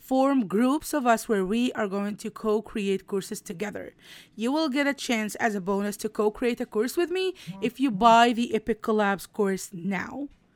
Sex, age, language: female, 20-39, English